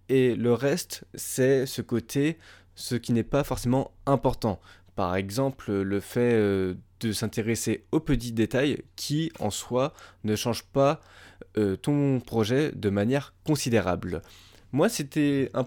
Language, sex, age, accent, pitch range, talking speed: French, male, 20-39, French, 105-130 Hz, 135 wpm